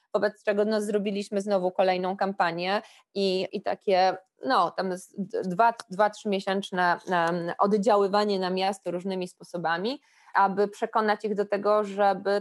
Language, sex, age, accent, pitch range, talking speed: Polish, female, 20-39, native, 185-225 Hz, 125 wpm